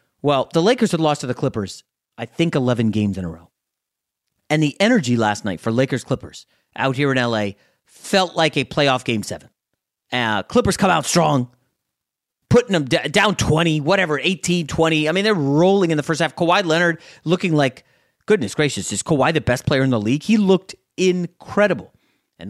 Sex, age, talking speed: male, 30-49, 190 wpm